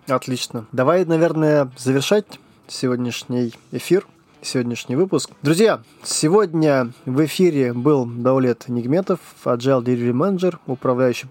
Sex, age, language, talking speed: male, 20-39, Russian, 100 wpm